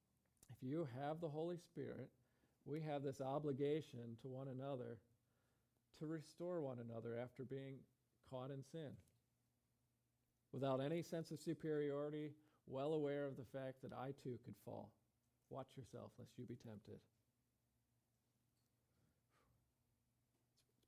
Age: 40-59